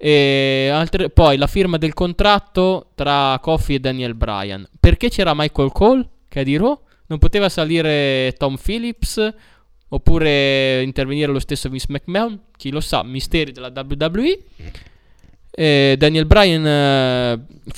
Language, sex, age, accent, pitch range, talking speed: Italian, male, 20-39, native, 135-175 Hz, 140 wpm